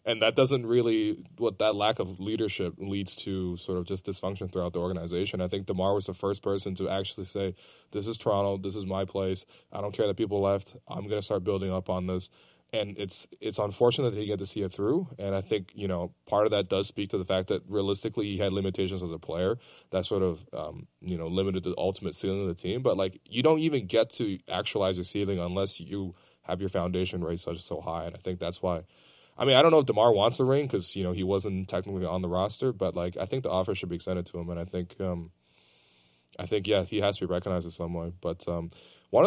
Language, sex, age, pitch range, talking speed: English, male, 20-39, 90-100 Hz, 260 wpm